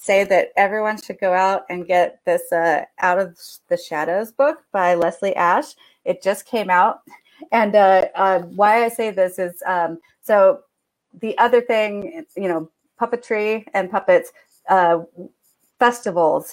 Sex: female